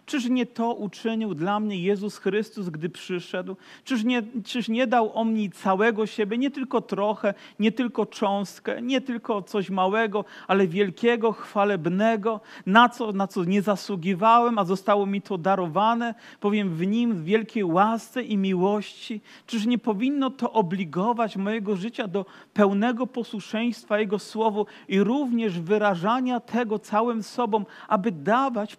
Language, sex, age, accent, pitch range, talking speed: Polish, male, 40-59, native, 195-235 Hz, 145 wpm